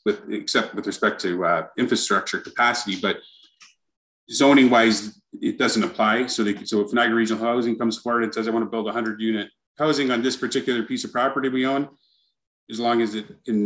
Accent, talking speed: American, 200 wpm